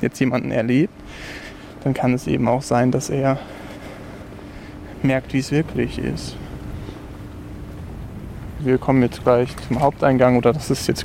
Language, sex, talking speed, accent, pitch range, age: German, male, 140 wpm, German, 105-135 Hz, 20-39